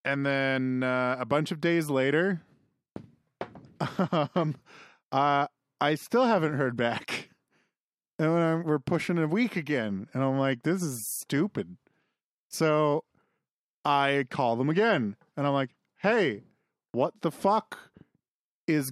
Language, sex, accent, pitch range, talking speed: English, male, American, 140-205 Hz, 125 wpm